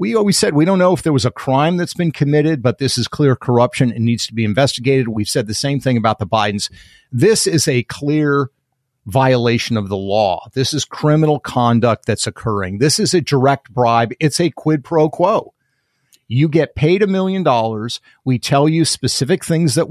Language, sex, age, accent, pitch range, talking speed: English, male, 50-69, American, 125-175 Hz, 205 wpm